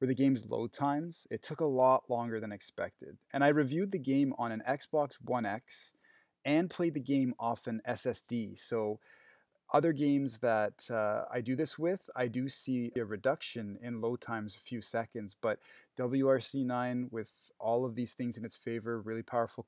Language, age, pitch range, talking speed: English, 20-39, 115-135 Hz, 185 wpm